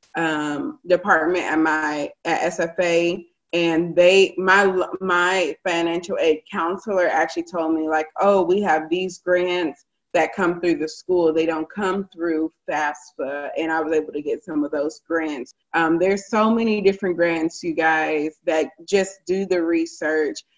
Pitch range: 165-195 Hz